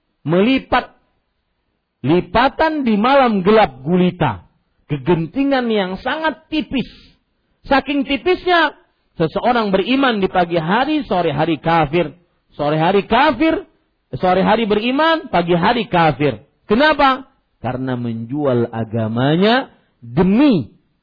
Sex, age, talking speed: male, 50-69, 95 wpm